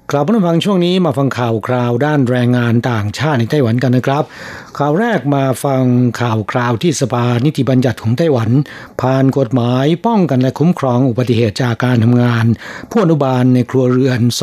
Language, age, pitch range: Thai, 60-79, 125-150 Hz